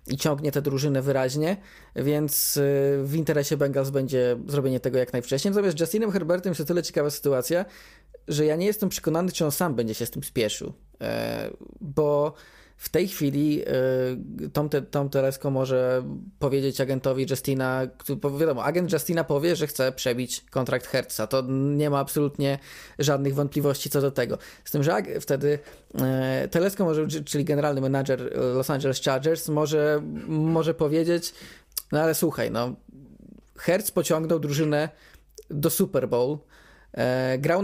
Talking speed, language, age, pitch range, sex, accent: 155 wpm, Polish, 20-39, 135-170 Hz, male, native